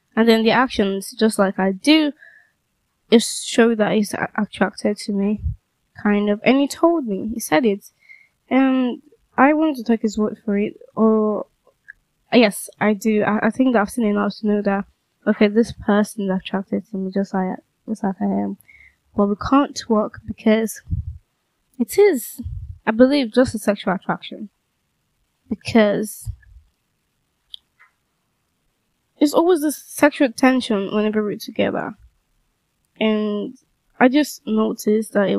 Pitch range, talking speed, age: 205-245 Hz, 150 wpm, 10-29